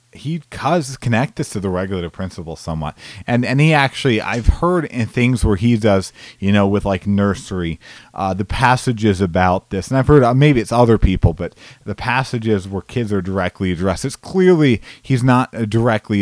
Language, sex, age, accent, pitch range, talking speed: English, male, 30-49, American, 95-120 Hz, 190 wpm